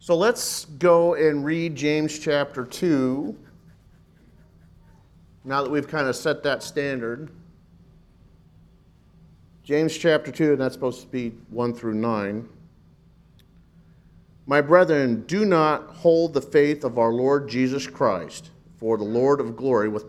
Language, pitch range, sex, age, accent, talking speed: English, 120-170 Hz, male, 50-69, American, 135 wpm